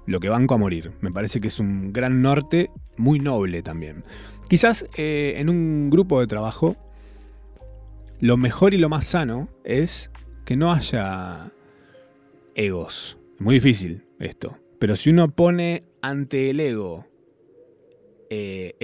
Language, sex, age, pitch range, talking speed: Spanish, male, 20-39, 95-145 Hz, 145 wpm